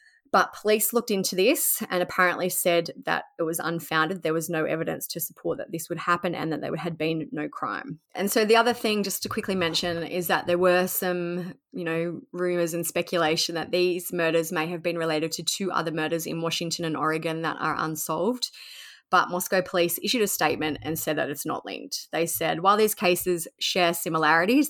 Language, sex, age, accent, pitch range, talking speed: English, female, 20-39, Australian, 160-180 Hz, 205 wpm